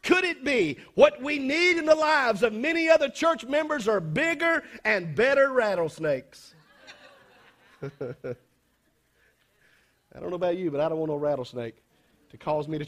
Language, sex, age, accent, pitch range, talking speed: English, male, 50-69, American, 170-255 Hz, 160 wpm